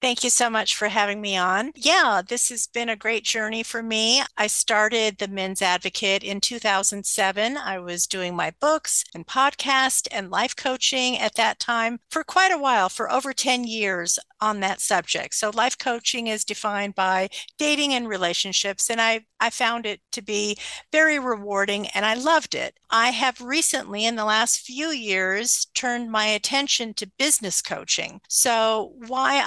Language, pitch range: English, 205-265 Hz